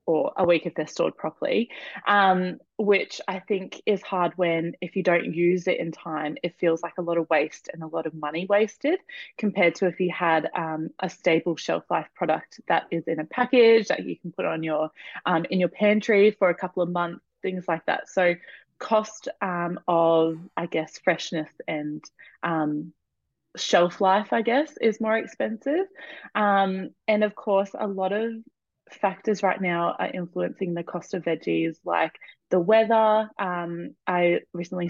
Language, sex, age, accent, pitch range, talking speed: English, female, 20-39, Australian, 170-205 Hz, 180 wpm